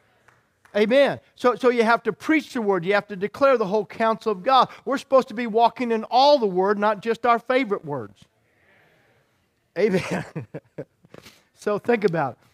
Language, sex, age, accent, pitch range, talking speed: English, male, 50-69, American, 205-240 Hz, 170 wpm